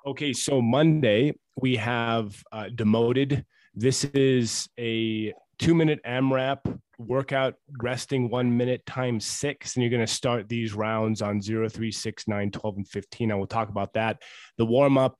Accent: American